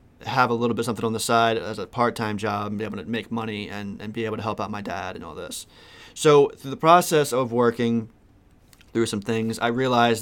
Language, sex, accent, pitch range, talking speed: English, male, American, 110-120 Hz, 240 wpm